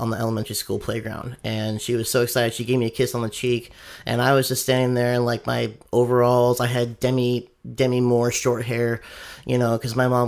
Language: English